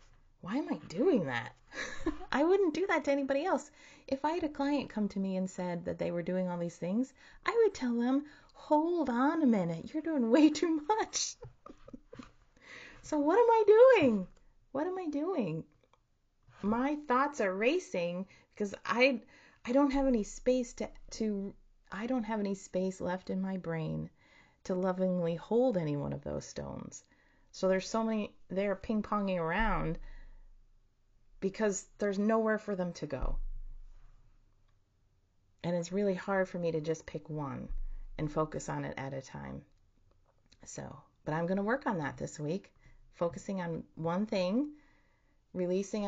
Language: English